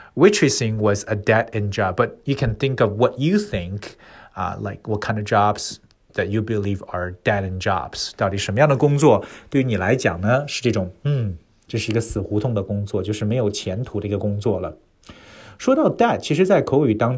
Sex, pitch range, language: male, 105-130 Hz, Chinese